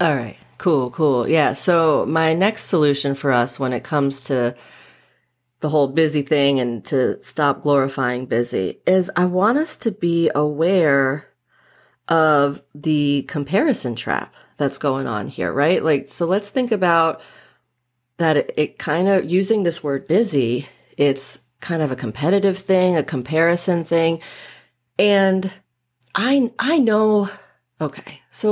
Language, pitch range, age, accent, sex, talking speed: English, 140-200 Hz, 30-49, American, female, 145 wpm